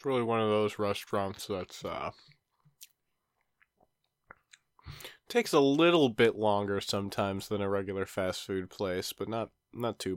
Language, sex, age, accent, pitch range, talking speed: English, male, 20-39, American, 95-110 Hz, 135 wpm